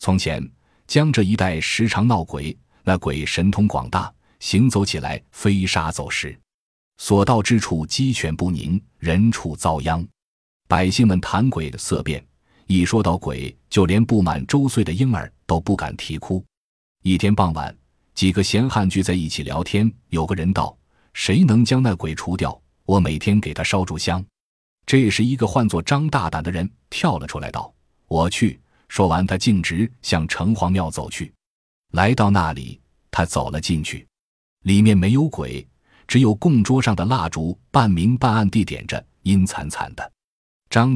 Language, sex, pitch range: Chinese, male, 80-110 Hz